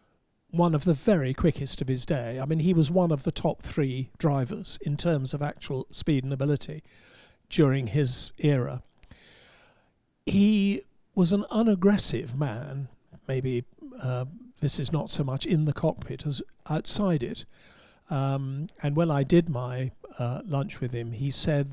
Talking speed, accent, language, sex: 160 wpm, British, English, male